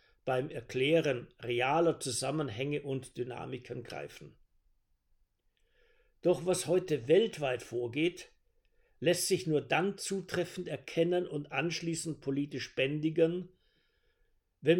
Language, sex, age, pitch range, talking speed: German, male, 50-69, 130-175 Hz, 95 wpm